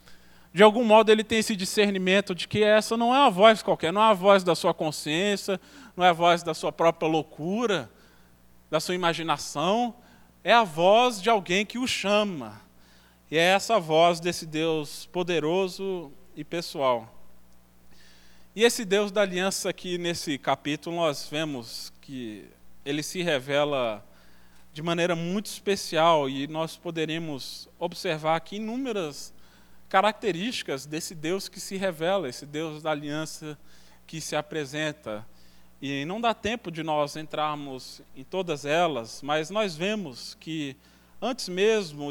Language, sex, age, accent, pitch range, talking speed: Portuguese, male, 20-39, Brazilian, 145-210 Hz, 145 wpm